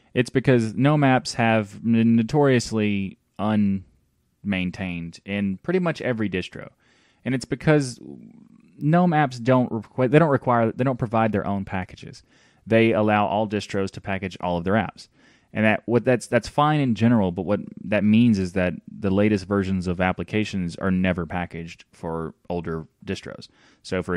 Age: 20-39